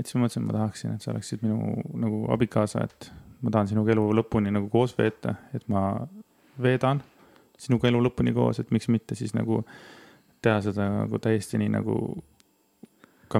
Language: English